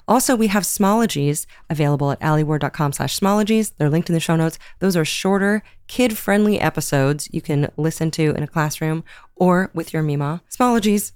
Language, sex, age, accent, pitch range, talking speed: English, female, 30-49, American, 150-195 Hz, 170 wpm